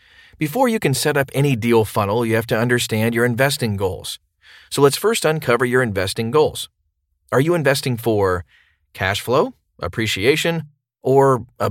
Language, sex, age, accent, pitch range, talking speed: English, male, 40-59, American, 105-135 Hz, 160 wpm